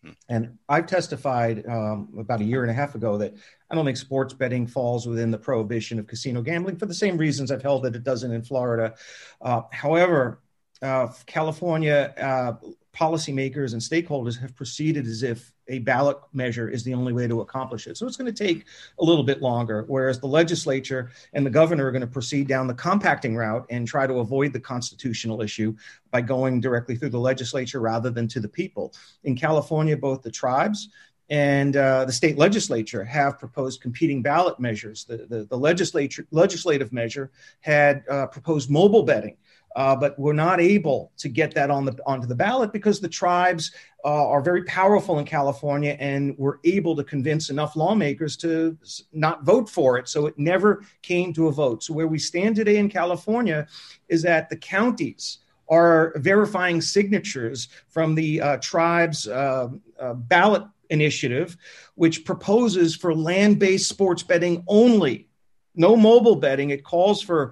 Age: 40-59